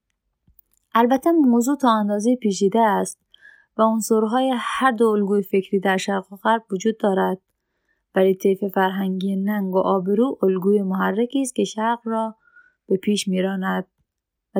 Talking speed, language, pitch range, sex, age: 140 wpm, Persian, 195-235 Hz, female, 20-39